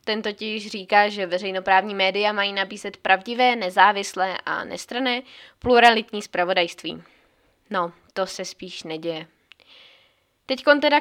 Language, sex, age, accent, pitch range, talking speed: Czech, female, 20-39, native, 190-220 Hz, 120 wpm